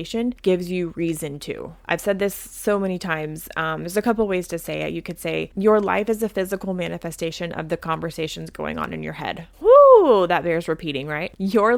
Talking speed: 210 wpm